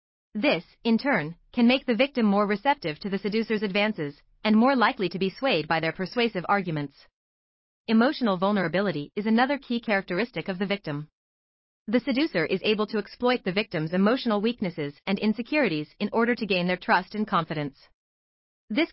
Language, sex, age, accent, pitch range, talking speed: English, female, 30-49, American, 170-230 Hz, 170 wpm